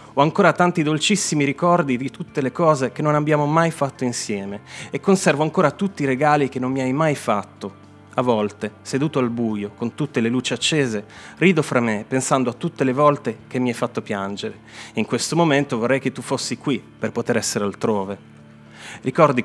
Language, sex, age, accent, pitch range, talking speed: Italian, male, 30-49, native, 110-150 Hz, 195 wpm